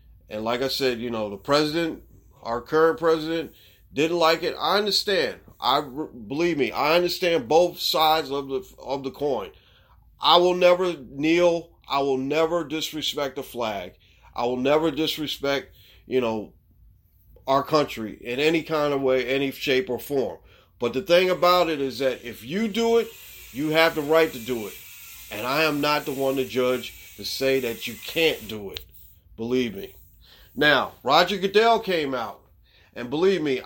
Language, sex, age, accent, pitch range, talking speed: English, male, 40-59, American, 115-160 Hz, 175 wpm